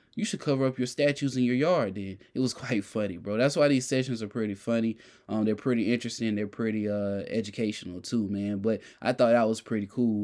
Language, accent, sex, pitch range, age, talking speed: English, American, male, 110-155 Hz, 20-39, 230 wpm